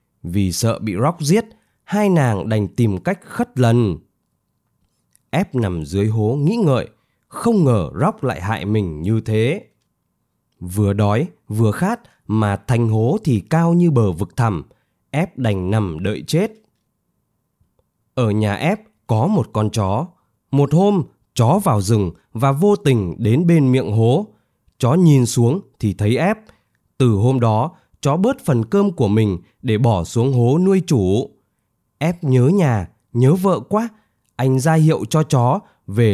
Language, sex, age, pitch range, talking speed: Vietnamese, male, 20-39, 110-160 Hz, 160 wpm